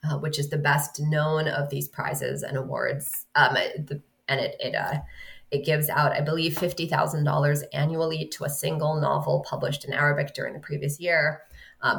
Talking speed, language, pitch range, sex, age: 190 wpm, English, 145-170 Hz, female, 20-39